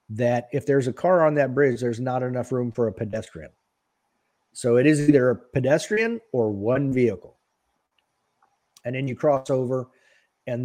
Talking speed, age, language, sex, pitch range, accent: 170 wpm, 50-69, English, male, 115-140 Hz, American